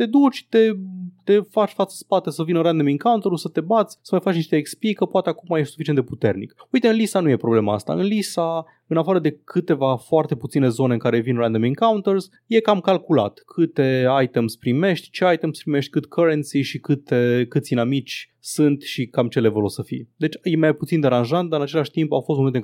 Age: 20-39